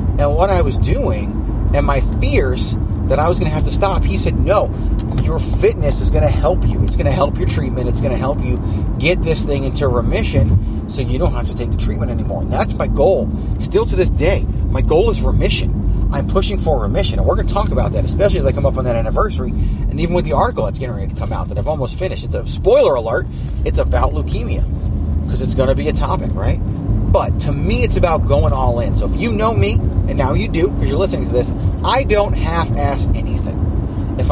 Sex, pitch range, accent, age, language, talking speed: male, 95-110 Hz, American, 30-49, English, 245 wpm